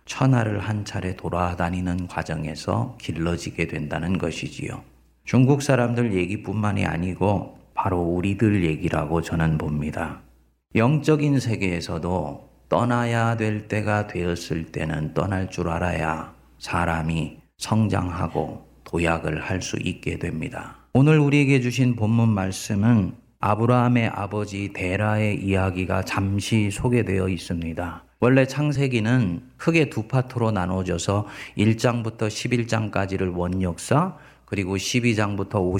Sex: male